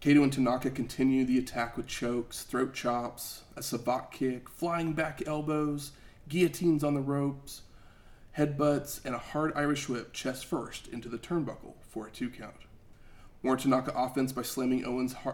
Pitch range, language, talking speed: 120-140 Hz, English, 160 wpm